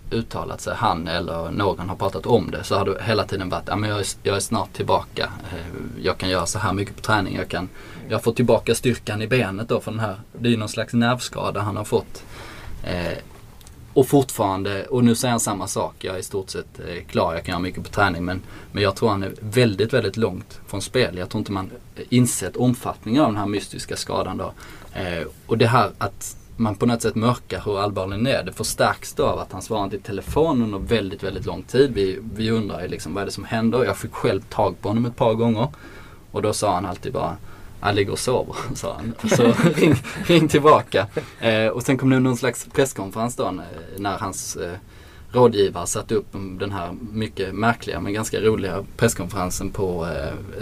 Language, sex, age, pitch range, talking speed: Swedish, male, 20-39, 95-115 Hz, 210 wpm